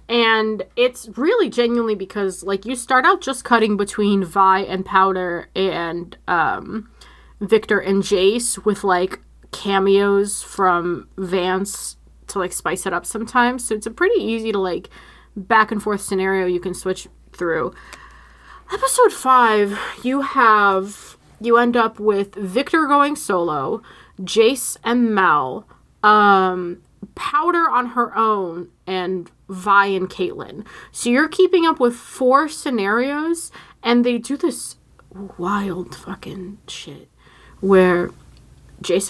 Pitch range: 190-245 Hz